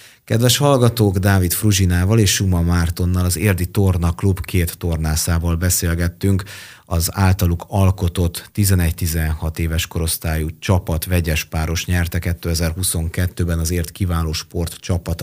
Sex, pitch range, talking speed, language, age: male, 85-100 Hz, 110 wpm, Hungarian, 30-49